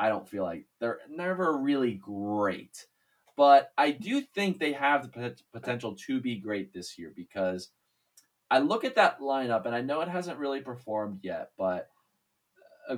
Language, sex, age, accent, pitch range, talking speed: English, male, 20-39, American, 105-140 Hz, 170 wpm